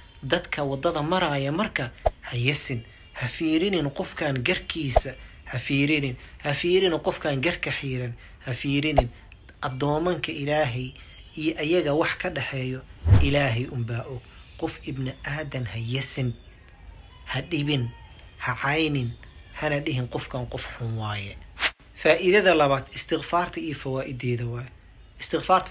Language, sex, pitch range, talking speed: Arabic, male, 125-155 Hz, 105 wpm